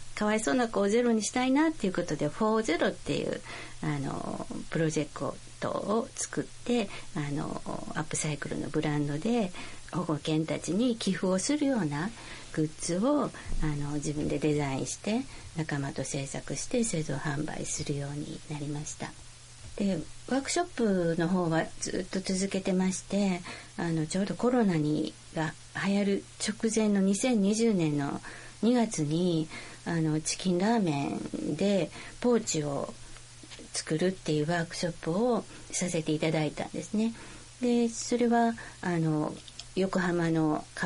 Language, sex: Japanese, female